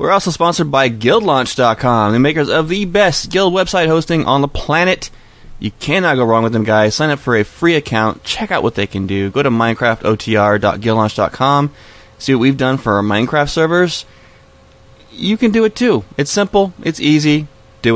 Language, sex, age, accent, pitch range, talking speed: English, male, 20-39, American, 110-145 Hz, 185 wpm